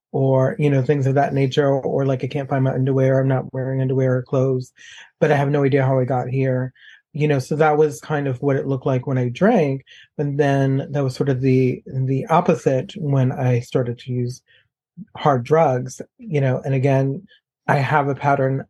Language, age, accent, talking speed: English, 30-49, American, 220 wpm